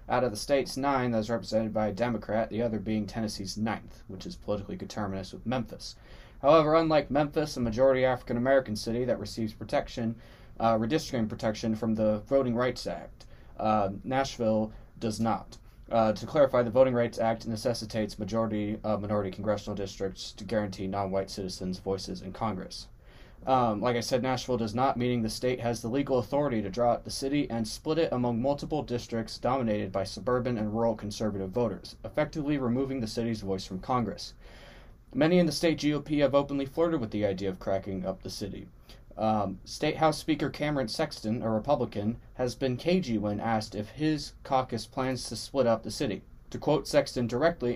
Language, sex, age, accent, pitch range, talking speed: English, male, 20-39, American, 105-130 Hz, 180 wpm